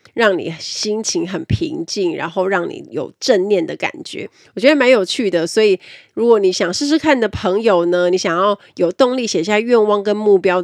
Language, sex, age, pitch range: Chinese, female, 30-49, 175-250 Hz